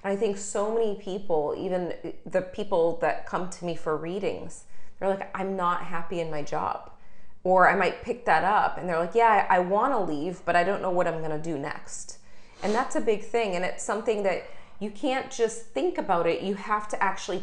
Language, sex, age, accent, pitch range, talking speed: English, female, 30-49, American, 170-210 Hz, 225 wpm